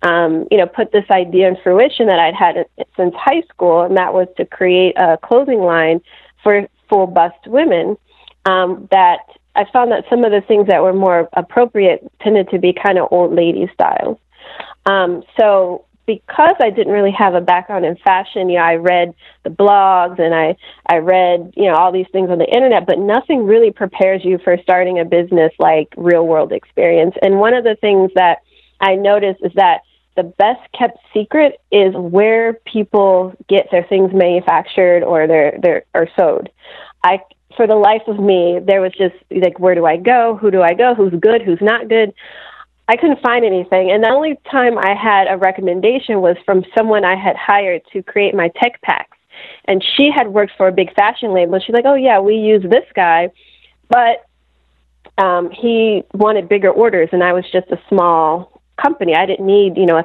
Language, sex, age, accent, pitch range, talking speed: English, female, 30-49, American, 180-220 Hz, 200 wpm